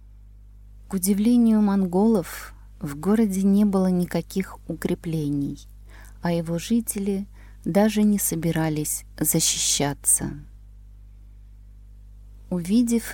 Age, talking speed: 20-39, 80 wpm